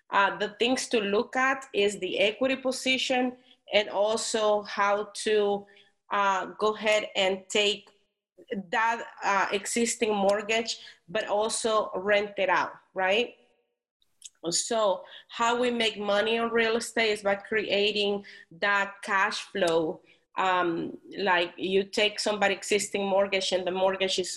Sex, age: female, 30-49